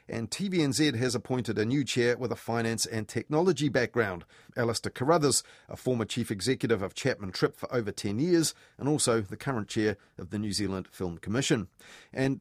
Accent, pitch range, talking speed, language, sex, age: Australian, 105-135 Hz, 185 wpm, English, male, 40-59